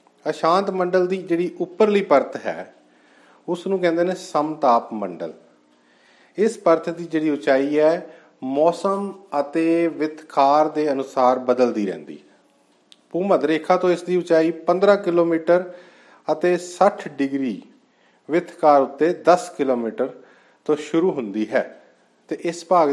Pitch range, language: 125-170 Hz, Punjabi